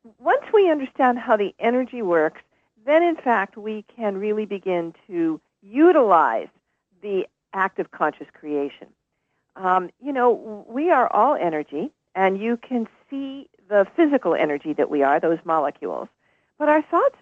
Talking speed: 150 wpm